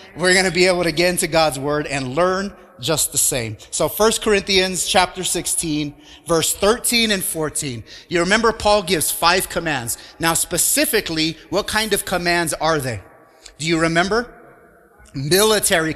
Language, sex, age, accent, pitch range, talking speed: English, male, 30-49, American, 150-195 Hz, 160 wpm